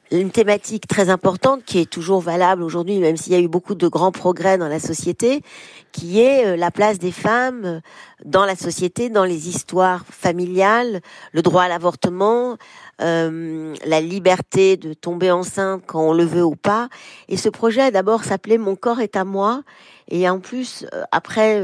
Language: French